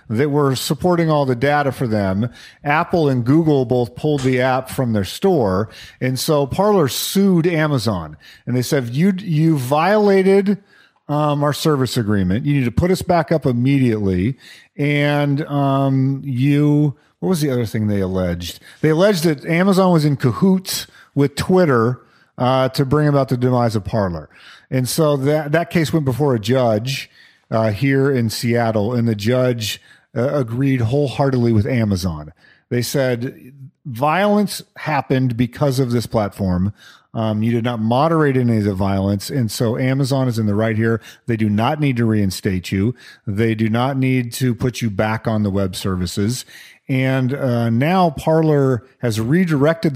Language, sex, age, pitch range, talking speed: English, male, 40-59, 115-150 Hz, 165 wpm